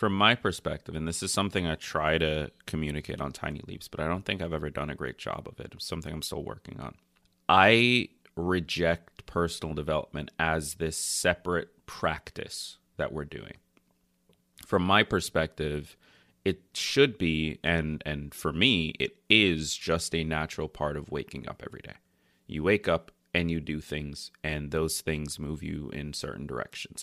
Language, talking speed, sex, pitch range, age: English, 175 wpm, male, 75-85 Hz, 30-49